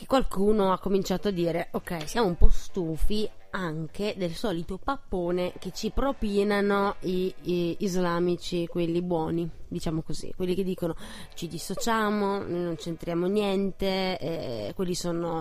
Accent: native